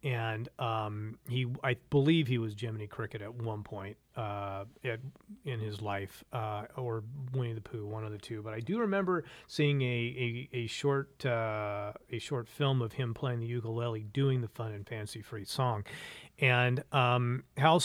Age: 40-59